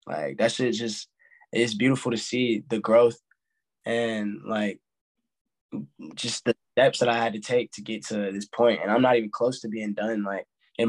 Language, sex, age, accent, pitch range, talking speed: English, male, 10-29, American, 105-125 Hz, 195 wpm